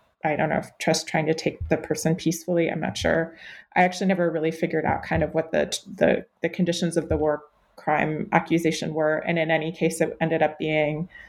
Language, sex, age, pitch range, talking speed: English, female, 20-39, 160-190 Hz, 220 wpm